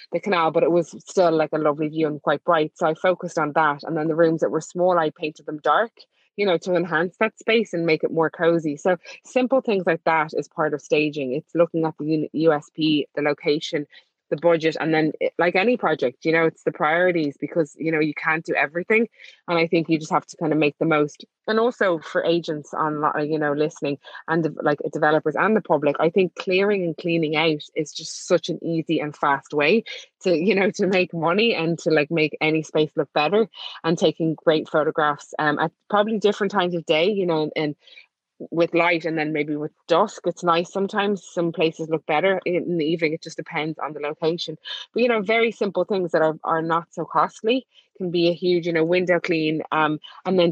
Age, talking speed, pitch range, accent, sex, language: 20-39, 230 wpm, 155-180 Hz, Irish, female, English